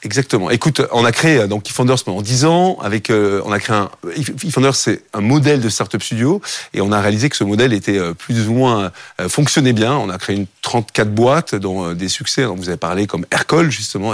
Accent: French